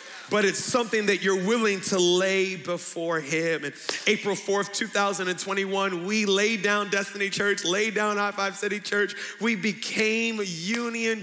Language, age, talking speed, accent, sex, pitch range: English, 30-49, 150 wpm, American, male, 195-240 Hz